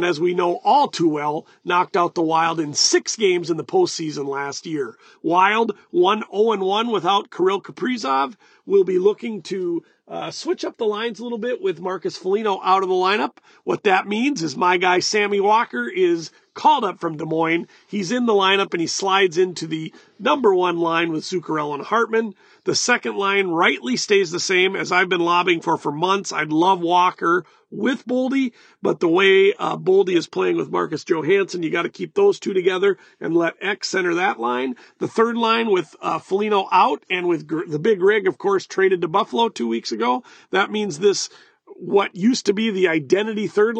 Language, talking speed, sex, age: English, 200 wpm, male, 40-59